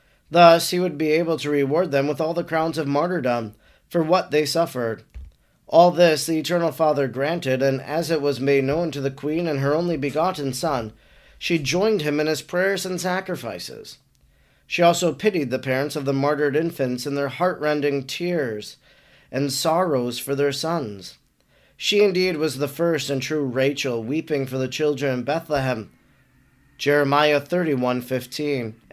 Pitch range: 135-165 Hz